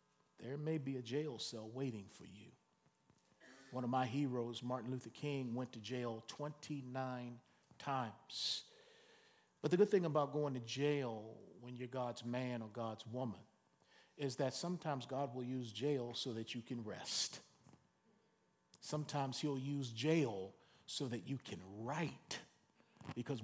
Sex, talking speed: male, 150 wpm